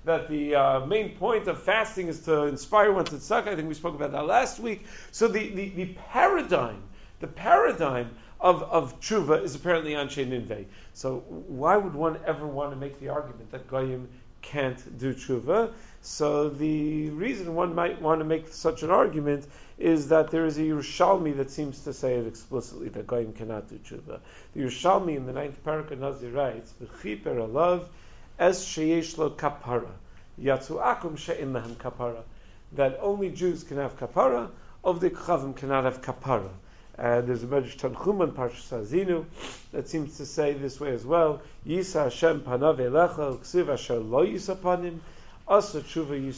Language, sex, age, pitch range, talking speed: English, male, 50-69, 125-170 Hz, 150 wpm